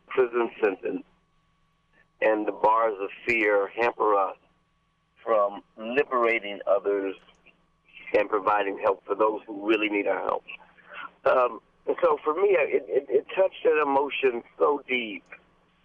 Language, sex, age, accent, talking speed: English, male, 50-69, American, 135 wpm